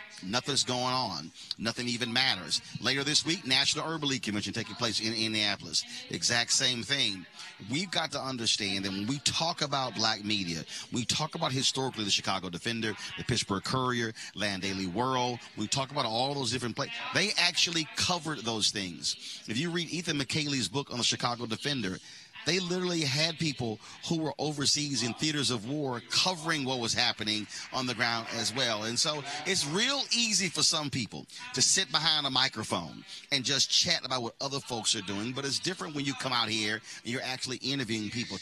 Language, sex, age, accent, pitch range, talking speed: English, male, 40-59, American, 110-140 Hz, 190 wpm